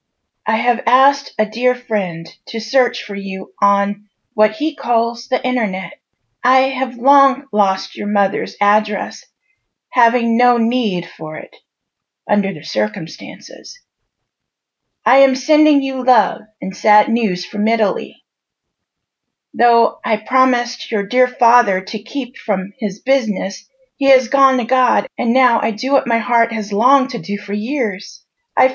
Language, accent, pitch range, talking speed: English, American, 210-255 Hz, 150 wpm